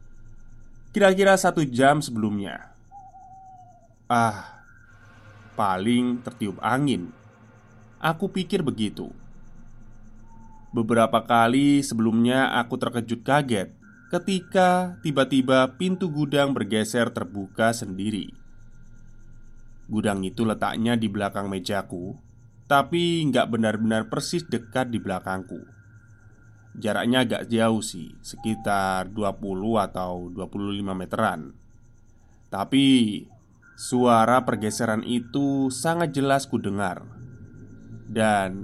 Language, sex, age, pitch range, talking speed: Indonesian, male, 20-39, 110-130 Hz, 85 wpm